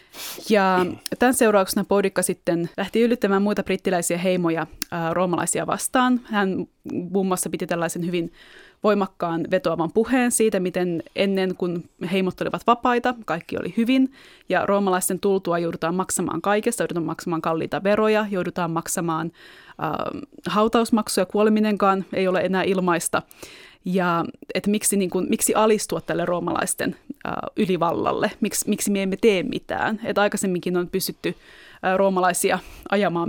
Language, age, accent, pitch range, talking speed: Finnish, 20-39, native, 180-215 Hz, 135 wpm